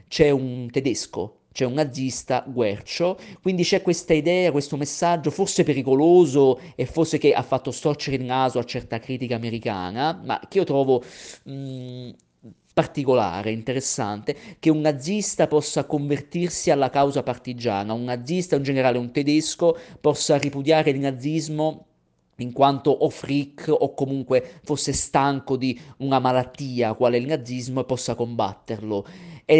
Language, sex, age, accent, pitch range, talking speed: Italian, male, 40-59, native, 125-155 Hz, 140 wpm